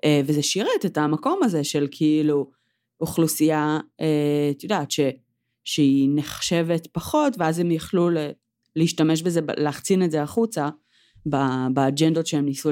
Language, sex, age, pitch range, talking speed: Hebrew, female, 30-49, 135-170 Hz, 130 wpm